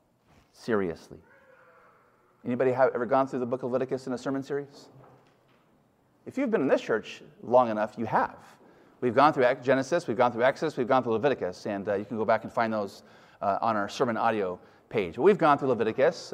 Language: English